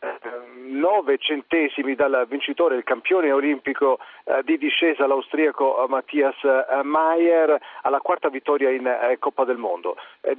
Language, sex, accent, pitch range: Italian, male, native, 135-170 Hz